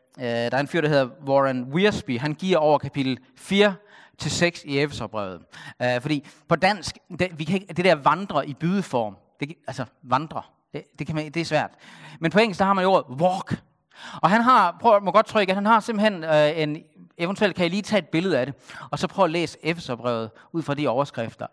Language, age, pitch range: Danish, 40-59, 130-180 Hz